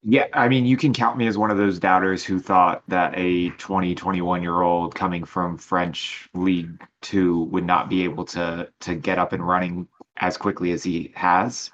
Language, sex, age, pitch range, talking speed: English, male, 20-39, 85-100 Hz, 195 wpm